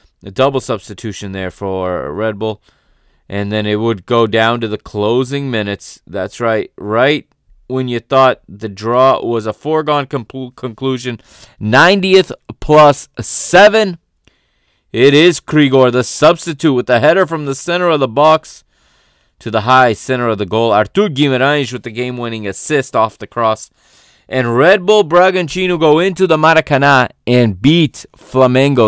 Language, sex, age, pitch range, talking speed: English, male, 20-39, 110-145 Hz, 150 wpm